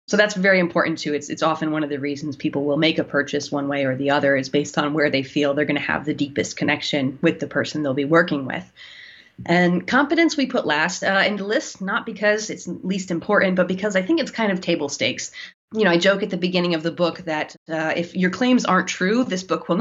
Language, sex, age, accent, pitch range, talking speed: English, female, 30-49, American, 155-190 Hz, 260 wpm